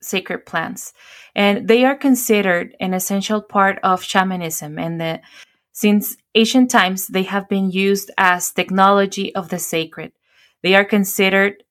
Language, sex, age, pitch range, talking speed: English, female, 20-39, 185-205 Hz, 140 wpm